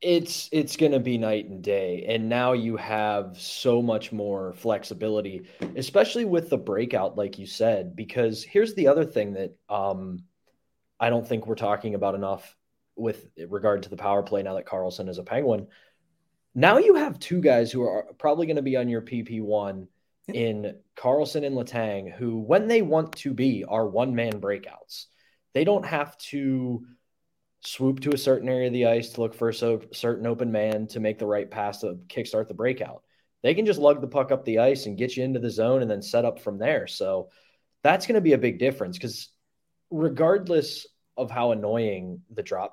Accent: American